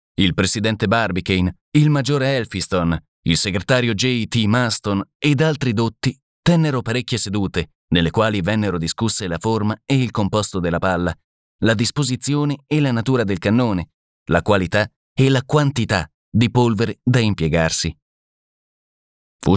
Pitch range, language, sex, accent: 95-130 Hz, Italian, male, native